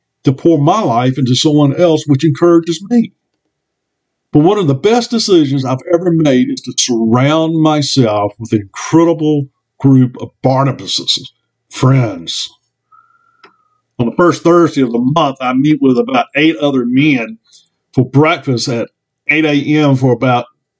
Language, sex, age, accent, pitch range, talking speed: English, male, 50-69, American, 125-160 Hz, 145 wpm